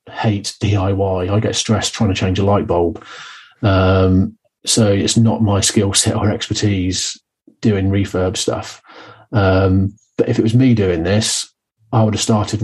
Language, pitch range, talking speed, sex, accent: English, 95-110 Hz, 165 wpm, male, British